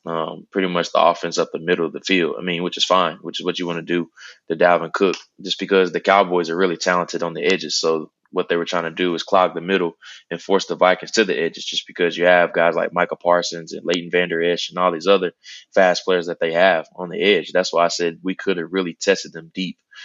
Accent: American